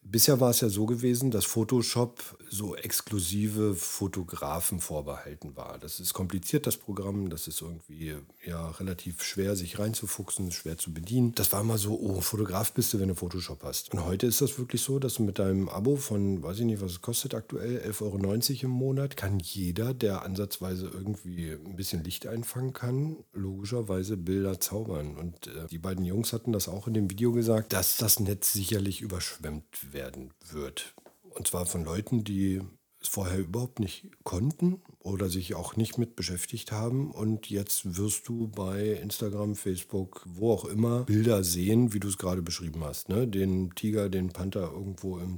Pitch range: 90-115 Hz